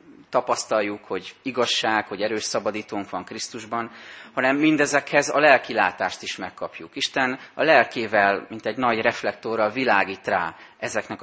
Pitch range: 100-120 Hz